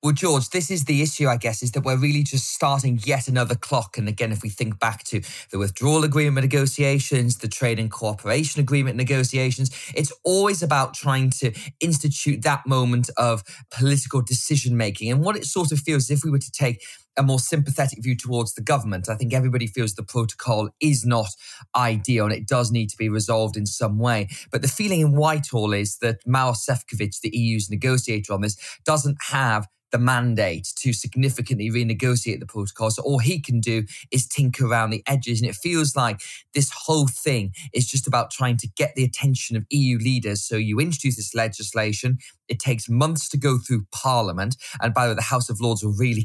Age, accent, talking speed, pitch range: 20-39, British, 200 wpm, 115-135 Hz